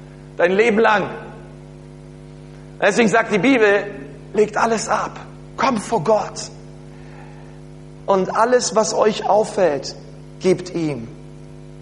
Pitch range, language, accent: 175-225 Hz, German, German